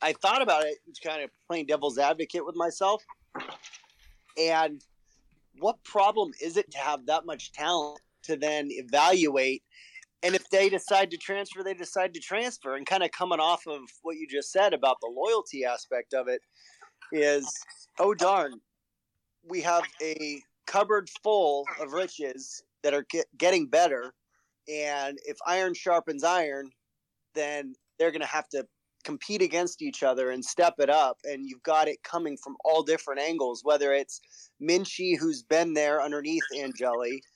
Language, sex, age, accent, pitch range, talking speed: English, male, 30-49, American, 145-185 Hz, 160 wpm